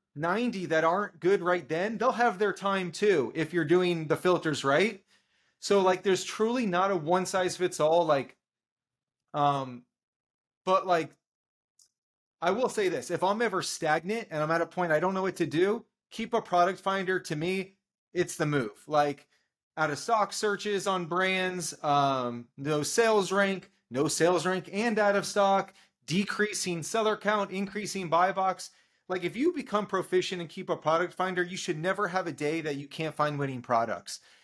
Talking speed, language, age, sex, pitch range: 185 wpm, English, 30-49, male, 160-200 Hz